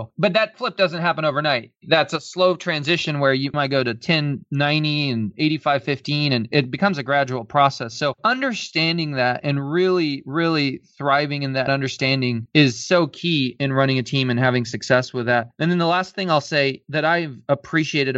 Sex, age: male, 20-39